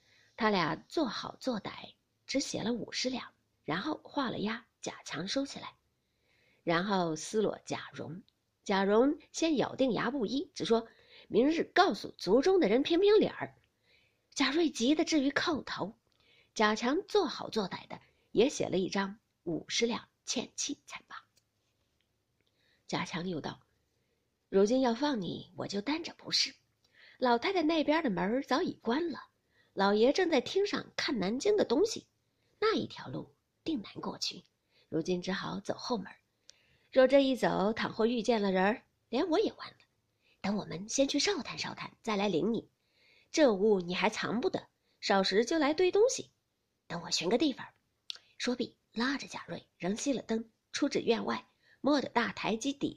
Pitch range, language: 205-295 Hz, Chinese